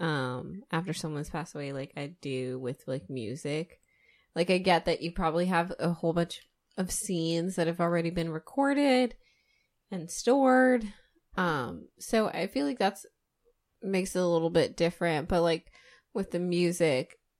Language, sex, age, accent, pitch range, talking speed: English, female, 20-39, American, 150-185 Hz, 160 wpm